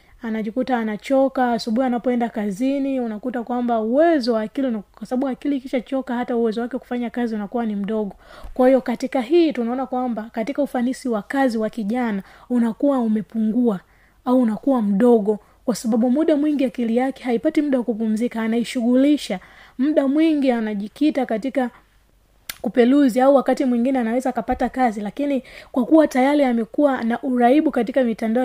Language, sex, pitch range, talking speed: Swahili, female, 230-265 Hz, 150 wpm